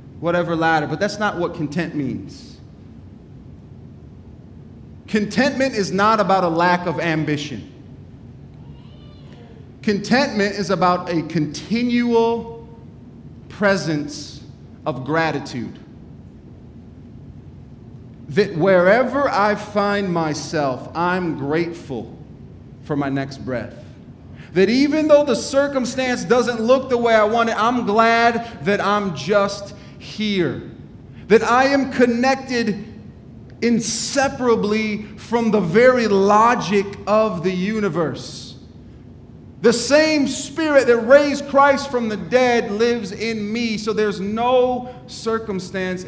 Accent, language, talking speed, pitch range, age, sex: American, English, 105 wpm, 155-230 Hz, 30-49, male